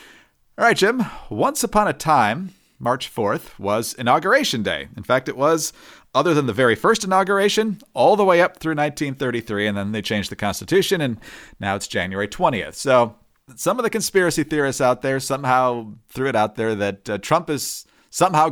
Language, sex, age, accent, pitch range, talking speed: English, male, 40-59, American, 110-155 Hz, 185 wpm